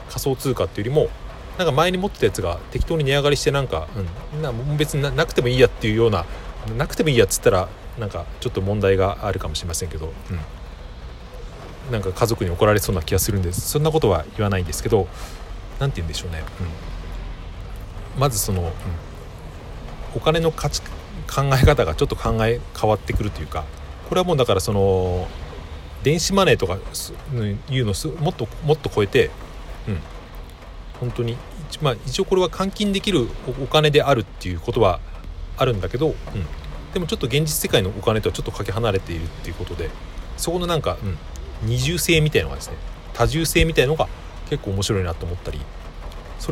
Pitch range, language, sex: 85-140 Hz, Japanese, male